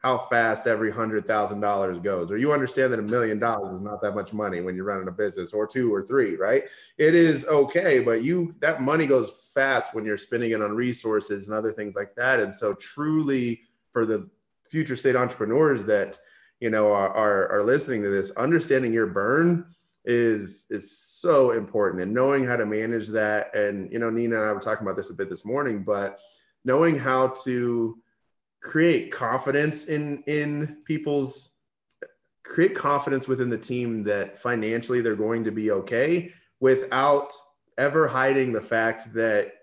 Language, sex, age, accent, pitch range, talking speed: English, male, 30-49, American, 110-145 Hz, 180 wpm